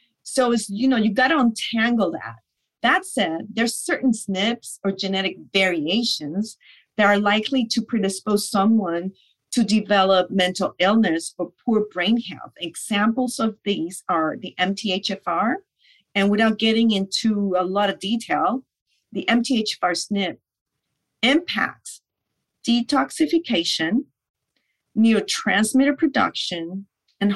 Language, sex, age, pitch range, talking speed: English, female, 40-59, 190-245 Hz, 115 wpm